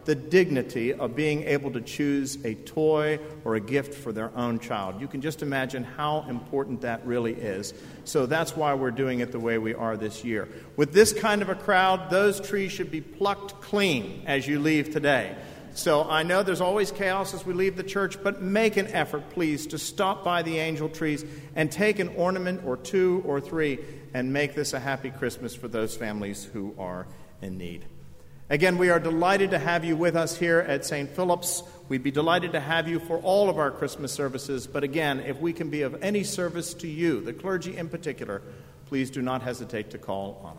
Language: English